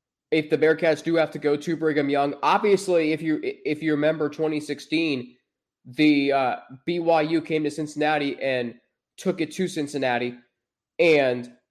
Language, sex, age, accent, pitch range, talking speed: English, male, 20-39, American, 135-165 Hz, 150 wpm